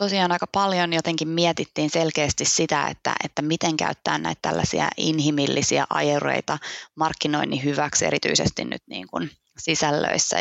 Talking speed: 120 wpm